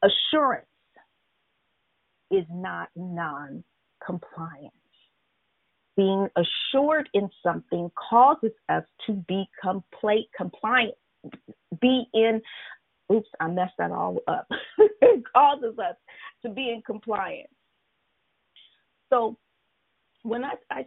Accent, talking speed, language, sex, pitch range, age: American, 95 wpm, English, female, 185-245 Hz, 40-59